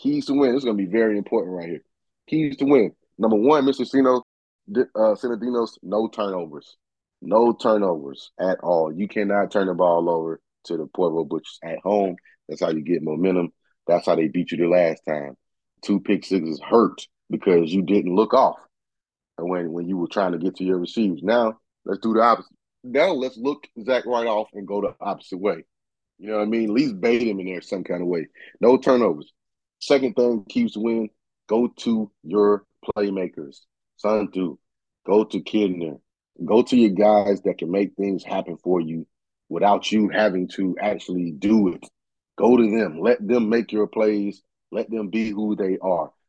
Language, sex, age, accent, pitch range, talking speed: English, male, 30-49, American, 90-115 Hz, 190 wpm